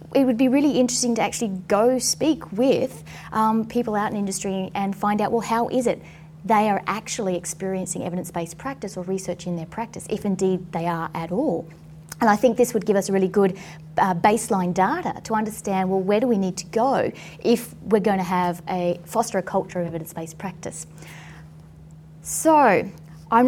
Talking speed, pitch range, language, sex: 190 wpm, 175-225 Hz, English, female